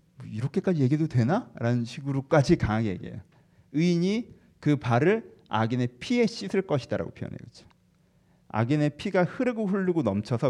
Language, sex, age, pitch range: Korean, male, 40-59, 105-150 Hz